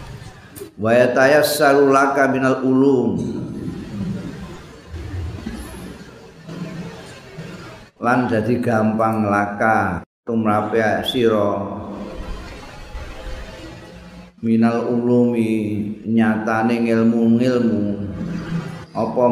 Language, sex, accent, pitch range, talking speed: Indonesian, male, native, 110-120 Hz, 55 wpm